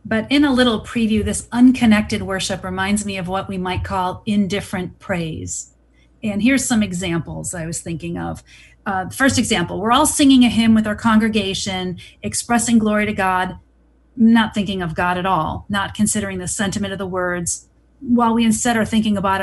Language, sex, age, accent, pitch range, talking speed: English, female, 40-59, American, 190-235 Hz, 180 wpm